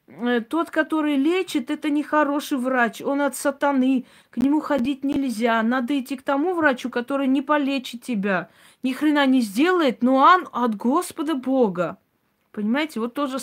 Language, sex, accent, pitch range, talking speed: Russian, female, native, 210-275 Hz, 155 wpm